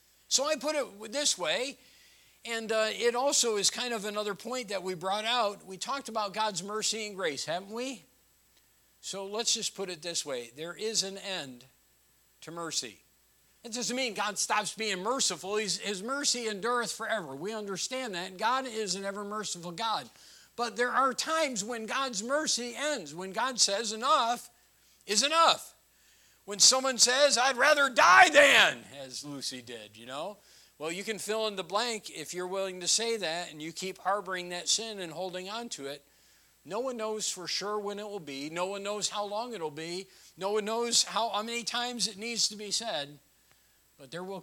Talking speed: 190 wpm